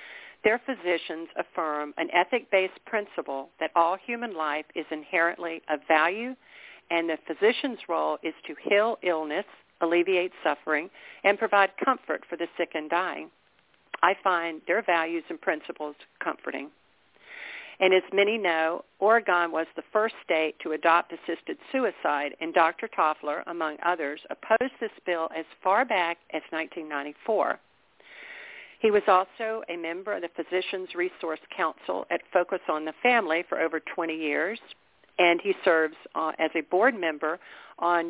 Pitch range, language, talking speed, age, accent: 160-205 Hz, English, 145 wpm, 50-69, American